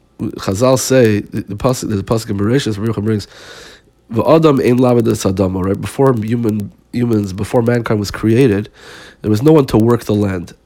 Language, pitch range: Hebrew, 105-130 Hz